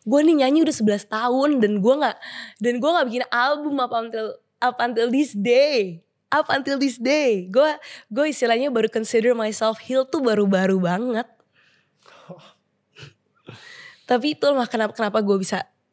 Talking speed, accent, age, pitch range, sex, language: 160 wpm, native, 20-39, 205-265 Hz, female, Indonesian